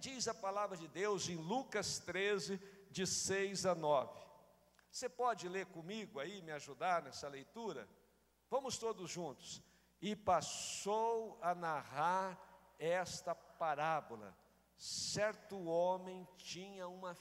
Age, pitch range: 60-79, 170-220 Hz